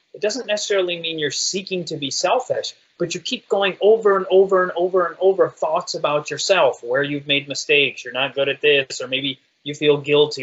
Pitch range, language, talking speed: 150-225 Hz, English, 215 wpm